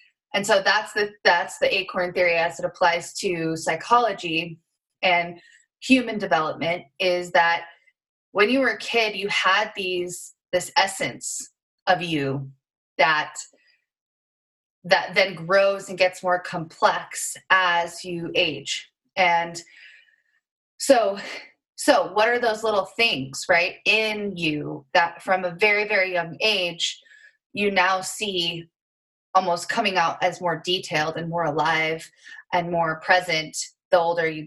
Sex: female